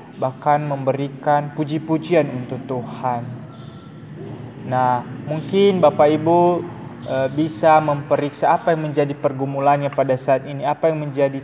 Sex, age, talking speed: male, 20-39, 115 wpm